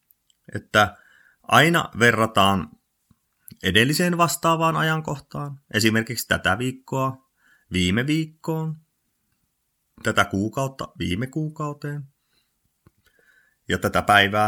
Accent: native